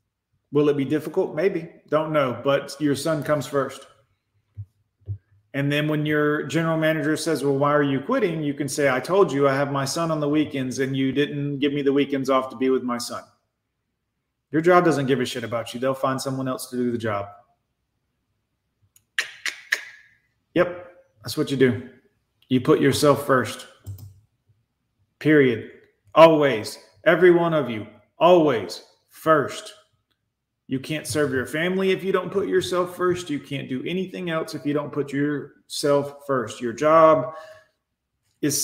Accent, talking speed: American, 170 wpm